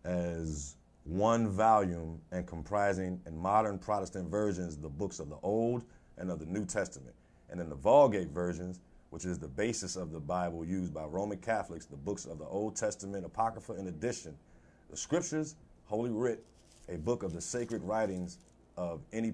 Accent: American